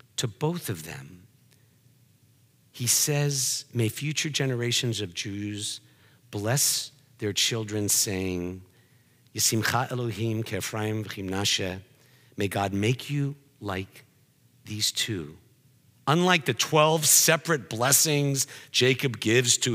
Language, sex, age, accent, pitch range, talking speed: English, male, 50-69, American, 115-170 Hz, 90 wpm